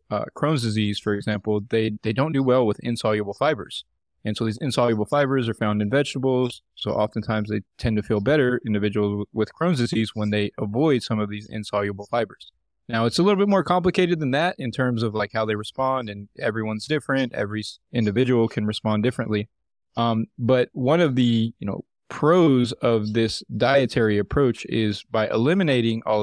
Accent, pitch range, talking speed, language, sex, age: American, 105-130 Hz, 190 wpm, English, male, 20-39